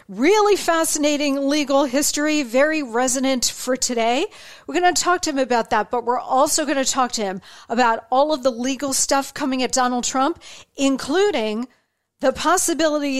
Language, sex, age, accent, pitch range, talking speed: English, female, 40-59, American, 235-290 Hz, 170 wpm